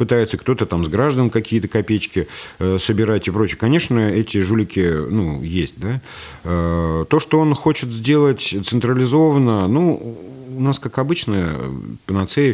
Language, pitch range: Russian, 80-115 Hz